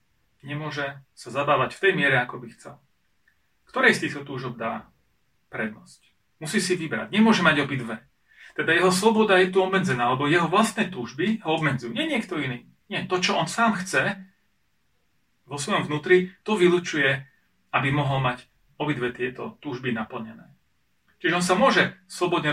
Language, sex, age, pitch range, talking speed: Slovak, male, 40-59, 130-190 Hz, 155 wpm